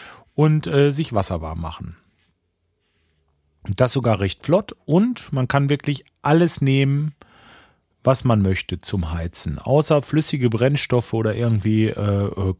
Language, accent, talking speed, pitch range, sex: German, German, 135 wpm, 100-135 Hz, male